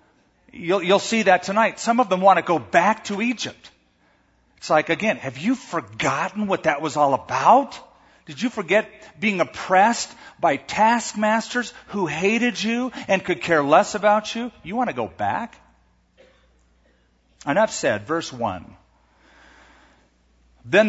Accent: American